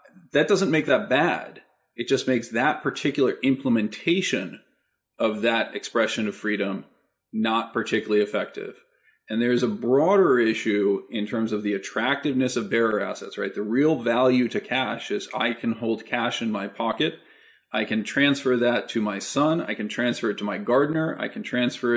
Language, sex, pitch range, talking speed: English, male, 110-130 Hz, 170 wpm